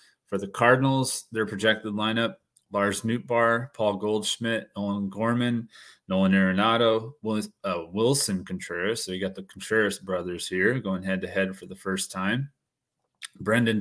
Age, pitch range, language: 20-39, 95-115 Hz, English